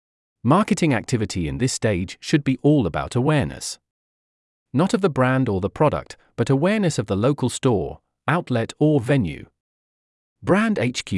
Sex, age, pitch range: male, 40-59, 95-140 Hz